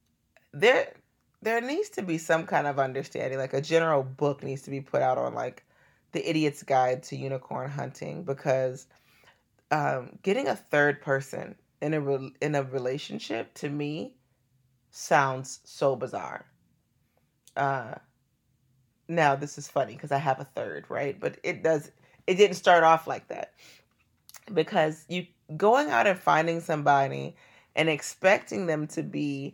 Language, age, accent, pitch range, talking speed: English, 30-49, American, 135-165 Hz, 150 wpm